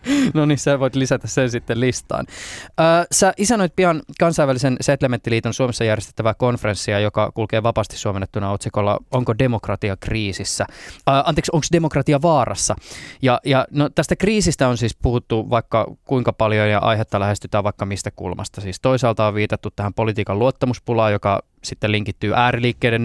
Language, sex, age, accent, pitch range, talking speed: Finnish, male, 20-39, native, 105-135 Hz, 150 wpm